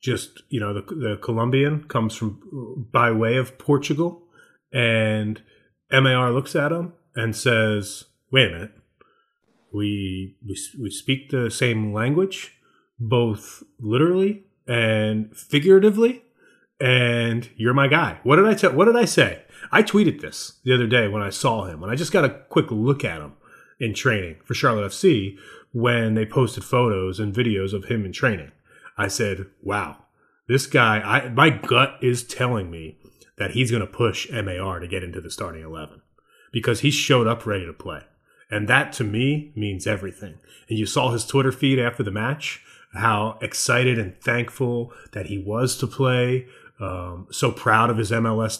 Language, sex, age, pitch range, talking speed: English, male, 30-49, 110-135 Hz, 170 wpm